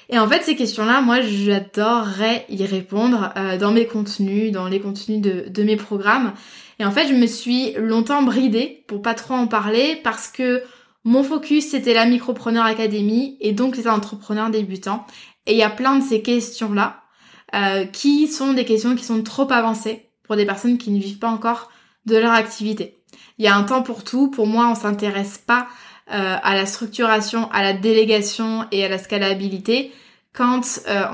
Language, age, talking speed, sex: French, 20-39, 190 wpm, female